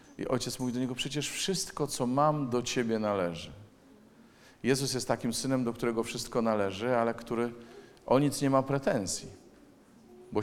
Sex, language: male, Polish